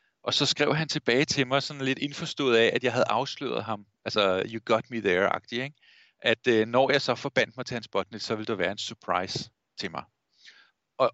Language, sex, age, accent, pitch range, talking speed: Danish, male, 40-59, native, 110-140 Hz, 215 wpm